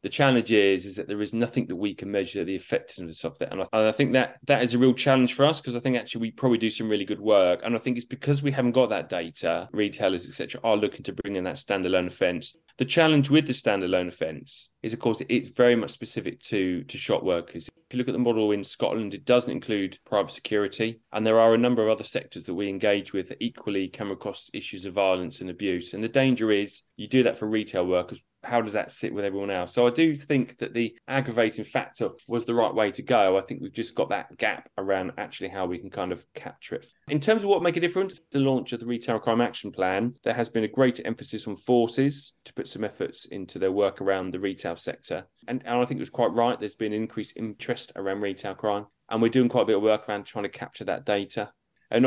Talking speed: 255 wpm